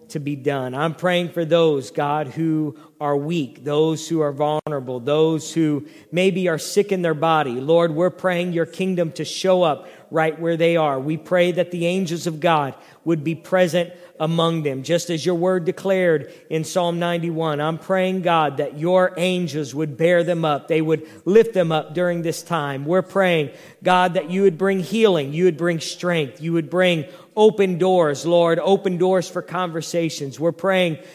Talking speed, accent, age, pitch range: 185 wpm, American, 40-59, 160-185 Hz